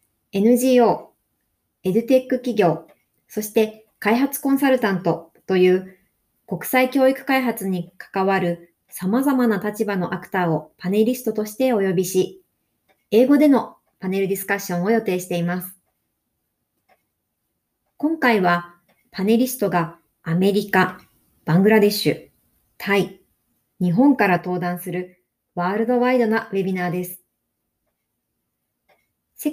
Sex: male